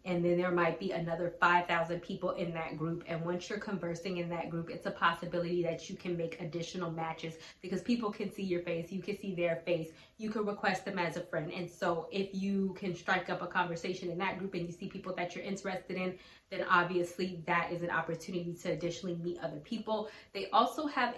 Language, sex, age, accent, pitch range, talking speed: English, female, 20-39, American, 170-200 Hz, 225 wpm